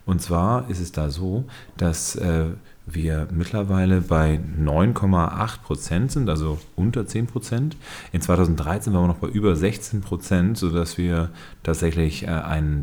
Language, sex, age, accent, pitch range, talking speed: German, male, 30-49, German, 80-100 Hz, 140 wpm